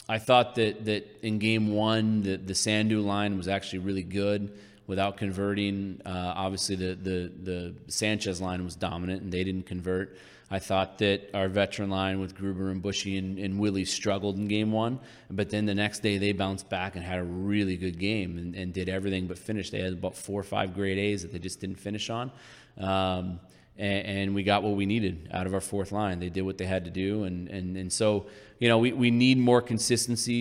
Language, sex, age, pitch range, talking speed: English, male, 30-49, 95-105 Hz, 220 wpm